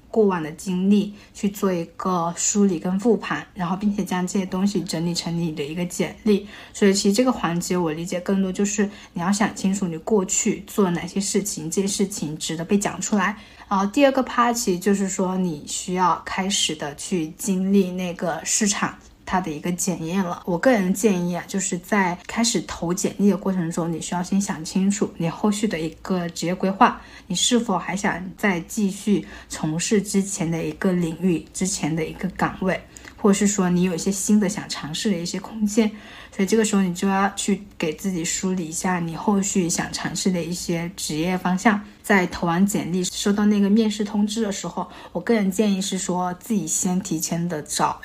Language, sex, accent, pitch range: Chinese, female, native, 175-205 Hz